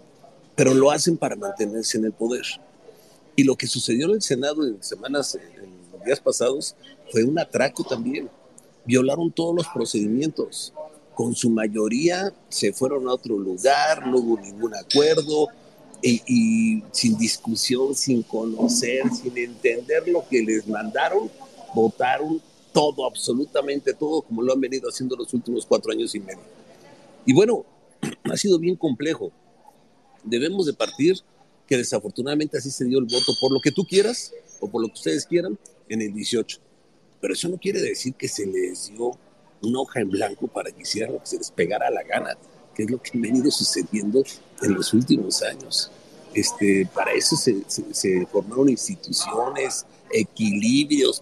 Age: 50-69